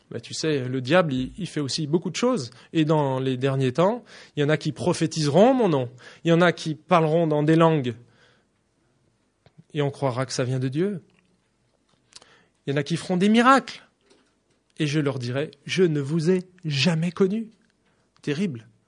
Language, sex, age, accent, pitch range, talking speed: English, male, 20-39, French, 145-200 Hz, 195 wpm